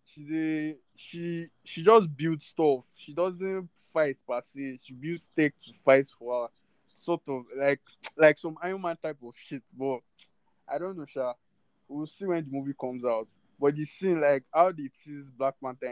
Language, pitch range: English, 120-155 Hz